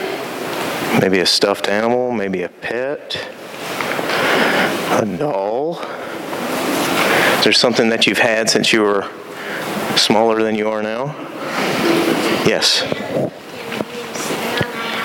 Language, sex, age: English, male, 30-49